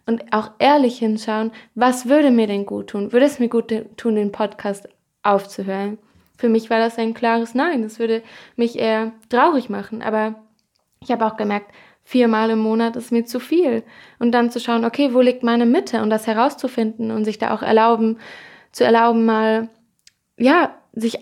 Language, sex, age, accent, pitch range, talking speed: German, female, 20-39, German, 220-240 Hz, 185 wpm